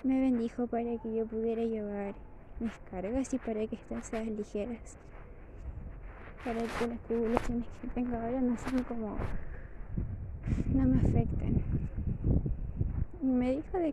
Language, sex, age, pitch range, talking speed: Spanish, female, 20-39, 215-245 Hz, 135 wpm